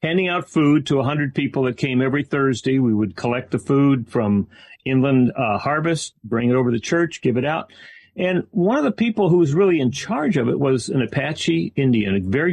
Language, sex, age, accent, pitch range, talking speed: English, male, 40-59, American, 115-160 Hz, 225 wpm